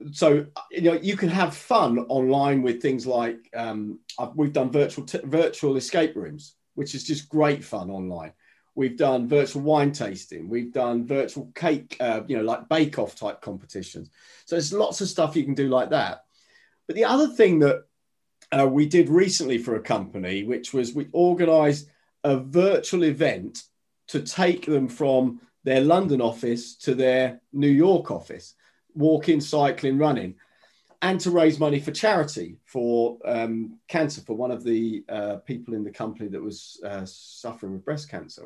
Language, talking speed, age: English, 175 wpm, 40-59